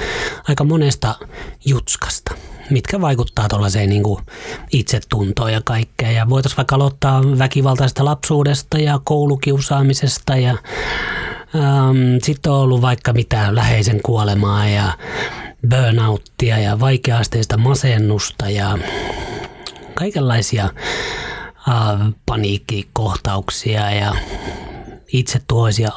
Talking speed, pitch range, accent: 85 wpm, 110-140 Hz, native